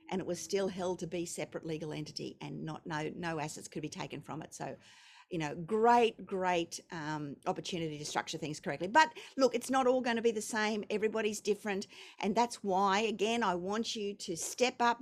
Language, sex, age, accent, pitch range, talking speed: English, female, 50-69, Australian, 190-255 Hz, 210 wpm